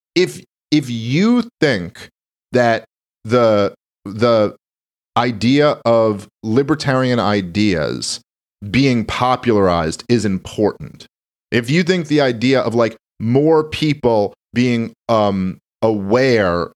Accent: American